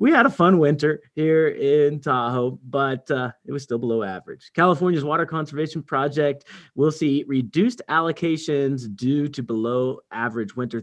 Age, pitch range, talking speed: 30-49, 120-160 Hz, 155 wpm